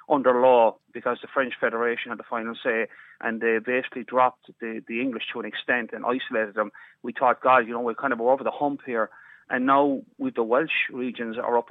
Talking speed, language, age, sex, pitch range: 220 wpm, English, 30-49, male, 120-145 Hz